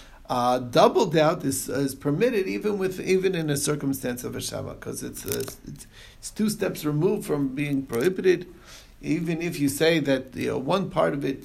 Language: English